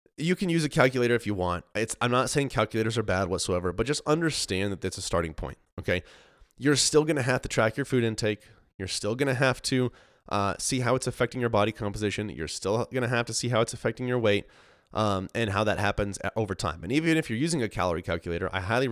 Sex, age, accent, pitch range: male, 30-49, American, 95-120 Hz